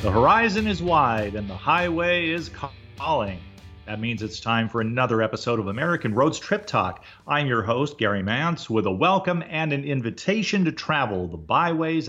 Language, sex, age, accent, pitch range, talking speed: English, male, 40-59, American, 105-145 Hz, 180 wpm